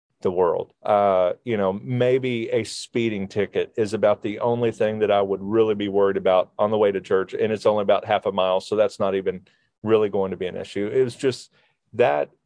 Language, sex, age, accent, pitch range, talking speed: English, male, 40-59, American, 105-125 Hz, 225 wpm